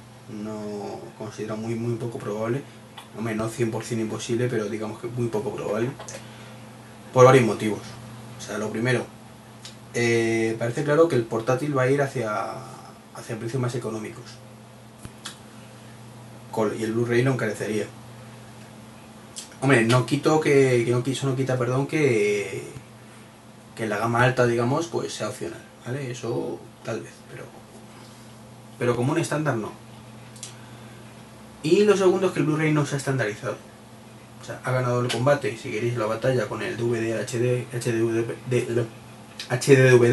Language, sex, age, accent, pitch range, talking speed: Spanish, male, 20-39, Spanish, 110-125 Hz, 145 wpm